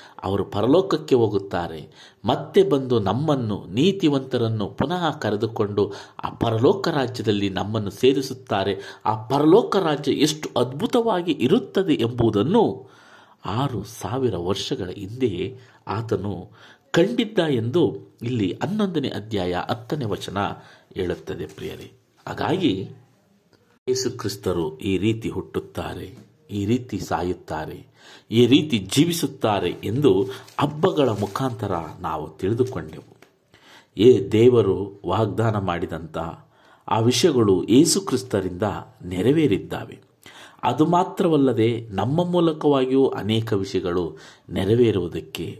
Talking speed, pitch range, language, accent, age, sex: 85 wpm, 100-140 Hz, Kannada, native, 50-69, male